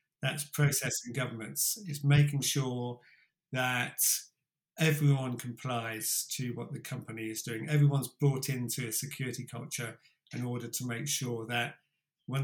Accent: British